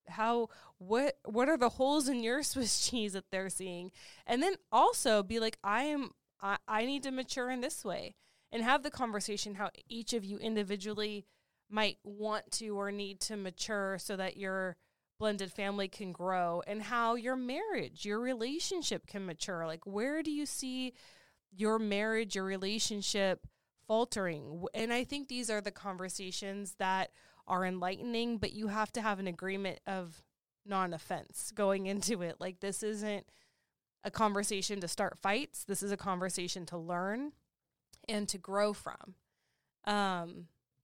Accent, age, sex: American, 20-39, female